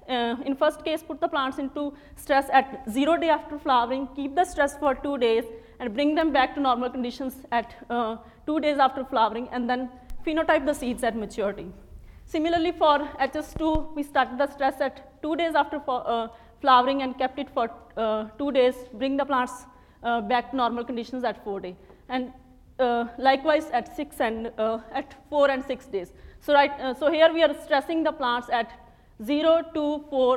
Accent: Indian